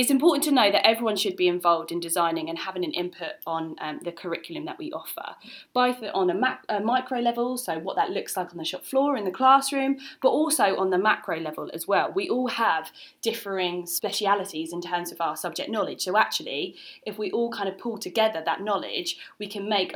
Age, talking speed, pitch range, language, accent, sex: 20-39, 220 wpm, 175-250 Hz, English, British, female